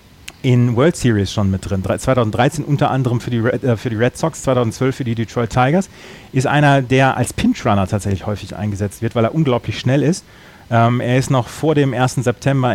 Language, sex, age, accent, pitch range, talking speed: German, male, 30-49, German, 105-130 Hz, 215 wpm